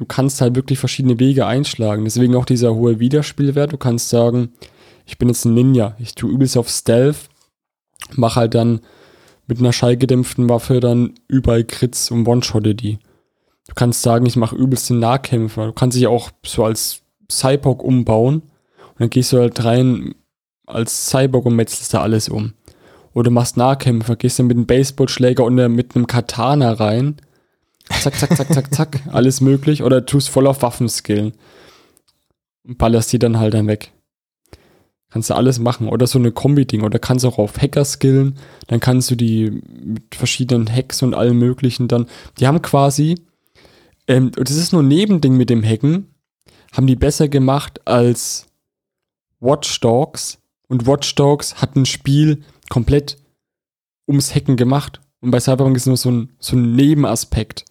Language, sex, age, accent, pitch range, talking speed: German, male, 20-39, German, 115-135 Hz, 175 wpm